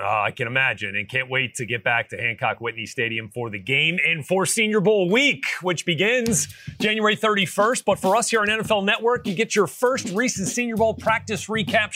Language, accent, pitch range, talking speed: English, American, 150-195 Hz, 210 wpm